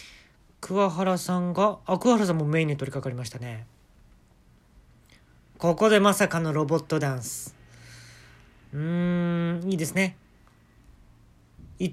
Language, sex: Japanese, male